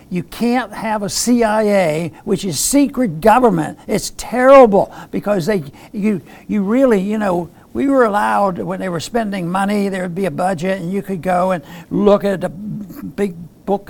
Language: English